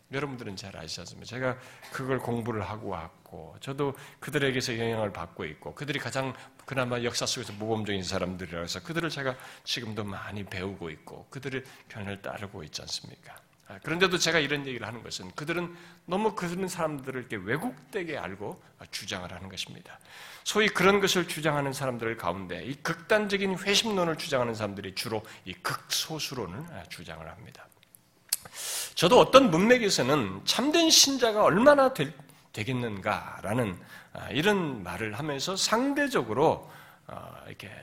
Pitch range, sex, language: 110-180 Hz, male, Korean